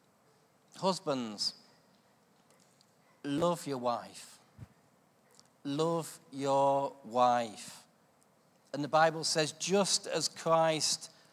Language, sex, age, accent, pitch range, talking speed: English, male, 40-59, British, 140-180 Hz, 75 wpm